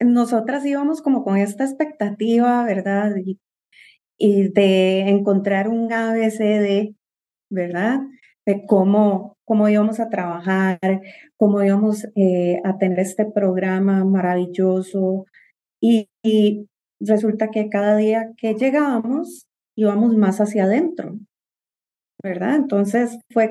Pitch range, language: 200-245 Hz, Spanish